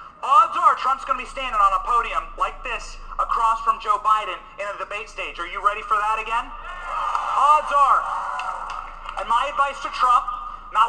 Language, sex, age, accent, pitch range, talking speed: English, male, 30-49, American, 190-285 Hz, 185 wpm